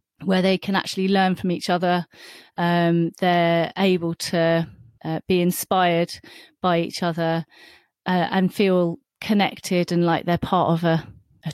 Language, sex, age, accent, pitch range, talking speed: English, female, 30-49, British, 165-190 Hz, 150 wpm